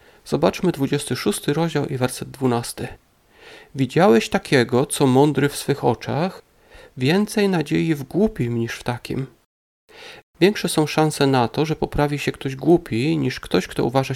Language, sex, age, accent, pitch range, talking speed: Polish, male, 40-59, native, 130-170 Hz, 145 wpm